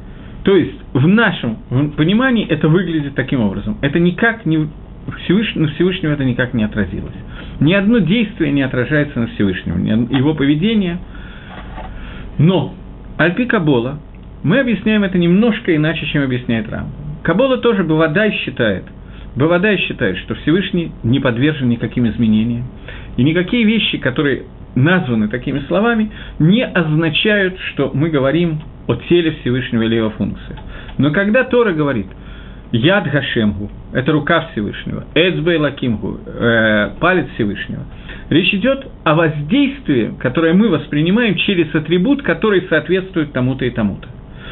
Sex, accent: male, native